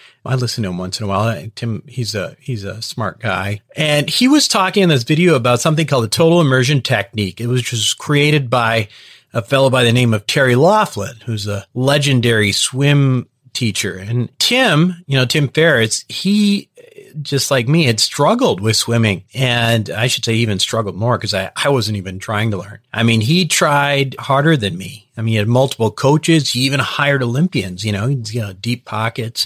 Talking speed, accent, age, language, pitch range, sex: 210 wpm, American, 40-59, English, 110-140 Hz, male